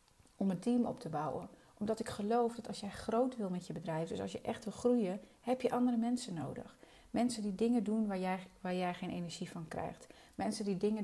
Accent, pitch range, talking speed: Dutch, 185-235 Hz, 230 wpm